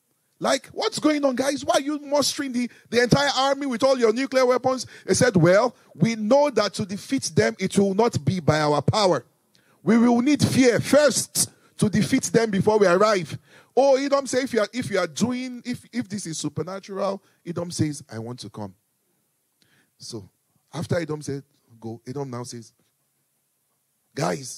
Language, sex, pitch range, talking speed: English, male, 135-220 Hz, 180 wpm